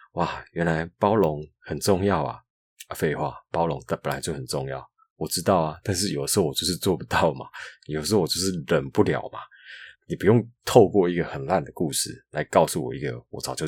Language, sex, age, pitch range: Chinese, male, 20-39, 75-100 Hz